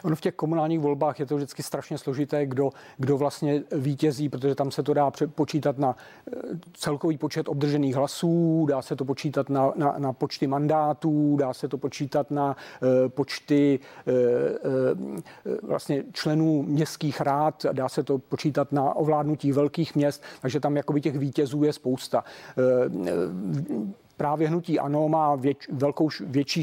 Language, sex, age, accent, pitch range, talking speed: Czech, male, 40-59, native, 140-155 Hz, 155 wpm